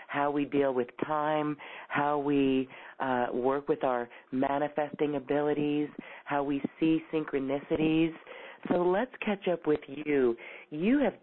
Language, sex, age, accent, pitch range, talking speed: English, female, 40-59, American, 135-170 Hz, 135 wpm